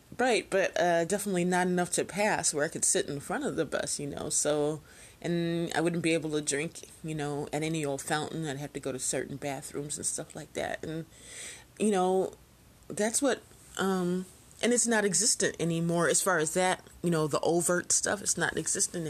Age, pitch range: 30-49, 145-180 Hz